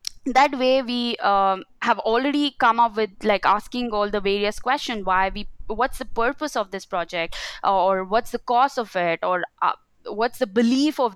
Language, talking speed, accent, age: English, 190 wpm, Indian, 20-39